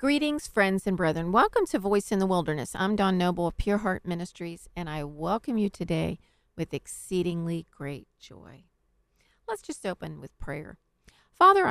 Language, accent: English, American